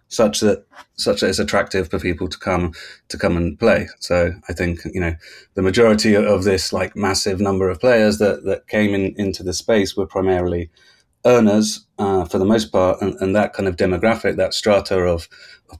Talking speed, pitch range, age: 200 wpm, 90-105 Hz, 30-49